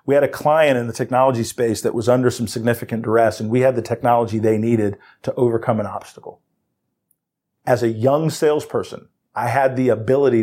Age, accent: 40-59, American